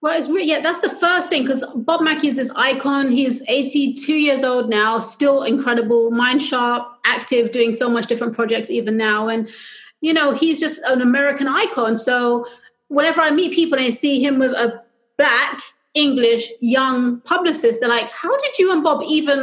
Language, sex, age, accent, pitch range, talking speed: English, female, 30-49, British, 240-305 Hz, 190 wpm